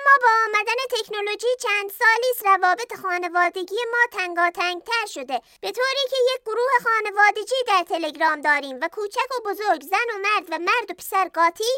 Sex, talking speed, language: male, 175 wpm, Persian